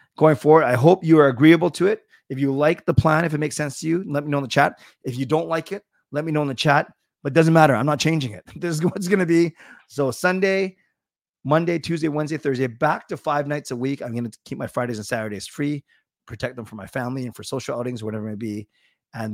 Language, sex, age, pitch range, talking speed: English, male, 30-49, 110-155 Hz, 270 wpm